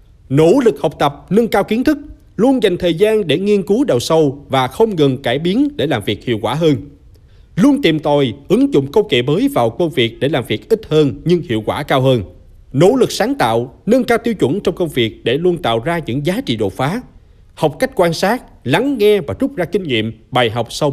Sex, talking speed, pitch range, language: male, 240 wpm, 125-200 Hz, Vietnamese